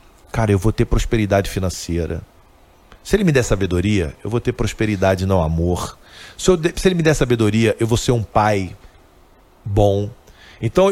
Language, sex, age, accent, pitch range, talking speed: Portuguese, male, 40-59, Brazilian, 100-155 Hz, 170 wpm